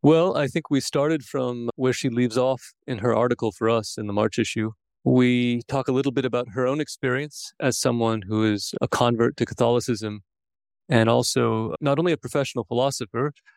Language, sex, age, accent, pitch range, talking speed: English, male, 30-49, American, 105-125 Hz, 190 wpm